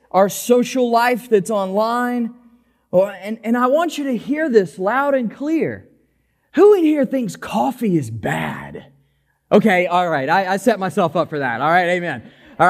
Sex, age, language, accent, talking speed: male, 20-39, English, American, 165 wpm